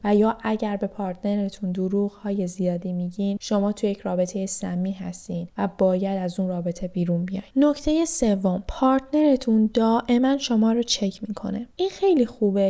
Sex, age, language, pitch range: female, 10-29, Persian, 200-230 Hz